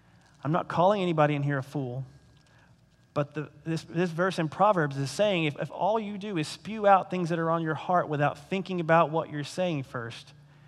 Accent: American